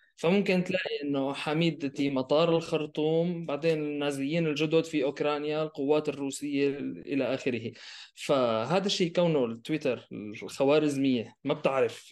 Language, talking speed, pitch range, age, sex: Arabic, 110 wpm, 125-155 Hz, 20-39, male